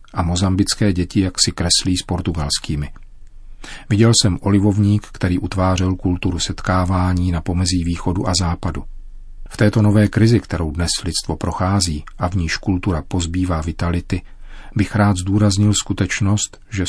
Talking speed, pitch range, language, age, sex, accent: 140 wpm, 90-100 Hz, Czech, 40-59, male, native